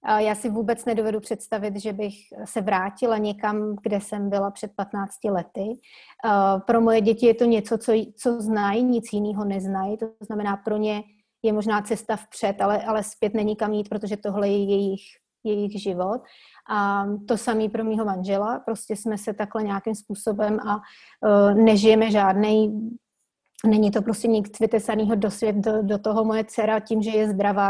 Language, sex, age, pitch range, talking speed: Slovak, female, 30-49, 205-225 Hz, 170 wpm